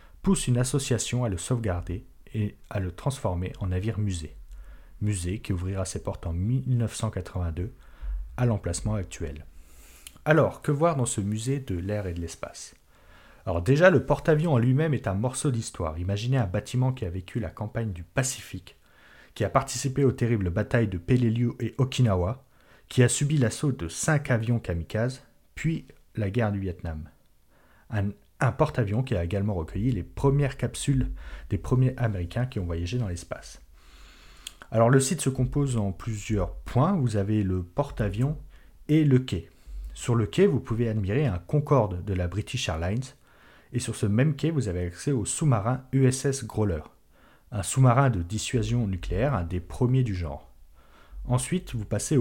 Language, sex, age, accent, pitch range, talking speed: French, male, 30-49, French, 90-130 Hz, 170 wpm